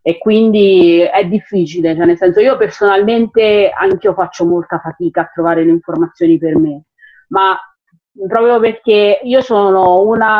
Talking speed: 150 wpm